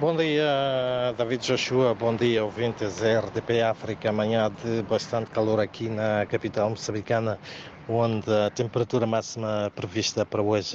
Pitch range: 110-125 Hz